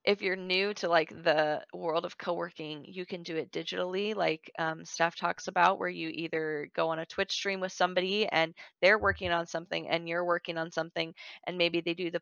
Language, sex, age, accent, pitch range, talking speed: English, female, 20-39, American, 165-205 Hz, 215 wpm